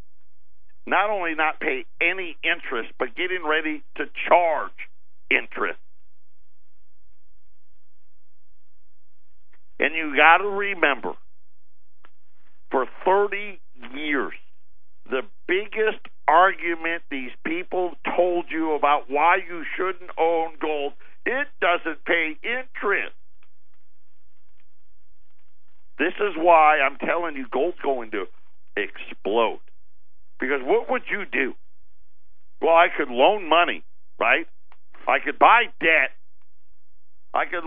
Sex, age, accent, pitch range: male, 50-69, American, 150-220 Hz